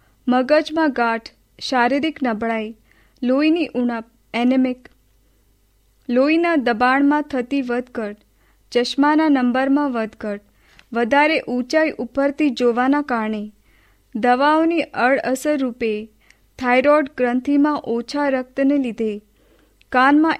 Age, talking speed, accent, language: 30-49, 95 wpm, native, Hindi